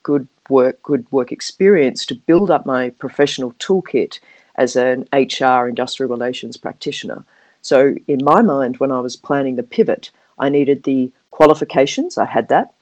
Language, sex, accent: English, female, Australian